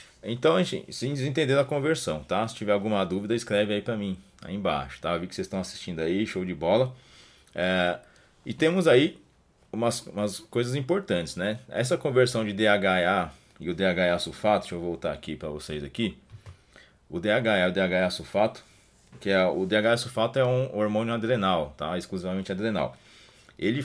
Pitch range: 95-115 Hz